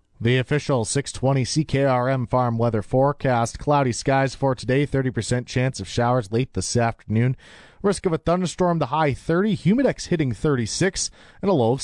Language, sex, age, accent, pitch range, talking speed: English, male, 30-49, American, 115-140 Hz, 160 wpm